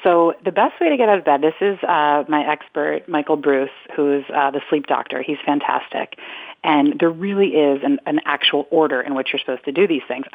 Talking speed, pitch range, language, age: 225 wpm, 135-160 Hz, English, 30-49